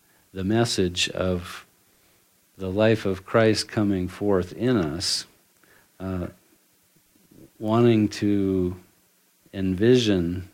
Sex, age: male, 50-69